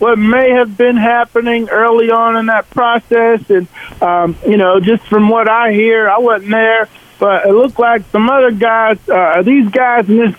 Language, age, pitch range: English, 50-69, 200-235 Hz